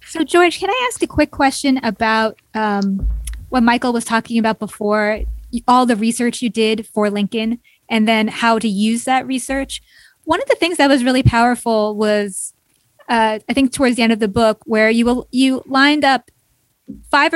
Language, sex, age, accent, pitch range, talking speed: English, female, 20-39, American, 210-250 Hz, 190 wpm